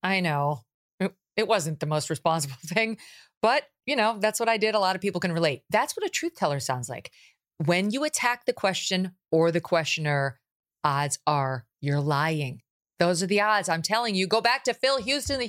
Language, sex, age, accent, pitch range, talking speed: English, female, 40-59, American, 150-205 Hz, 205 wpm